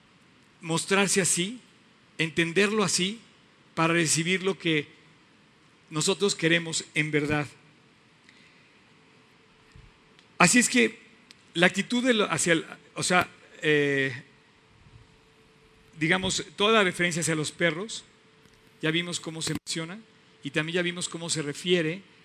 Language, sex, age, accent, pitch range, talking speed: Spanish, male, 50-69, Mexican, 150-190 Hz, 110 wpm